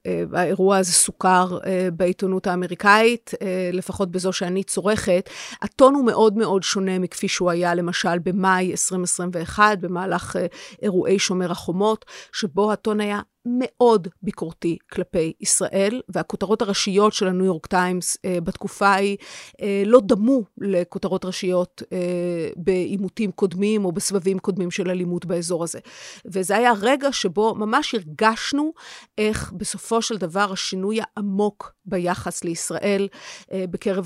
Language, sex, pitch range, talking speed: Hebrew, female, 185-215 Hz, 120 wpm